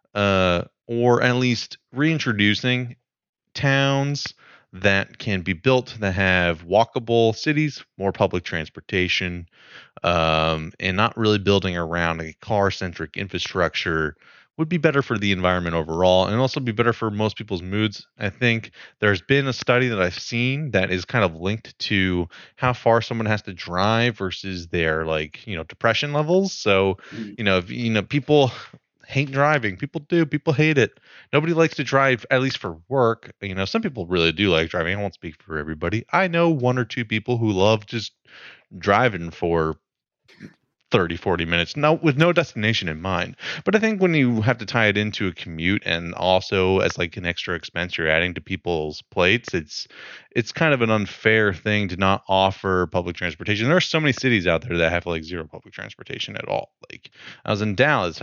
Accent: American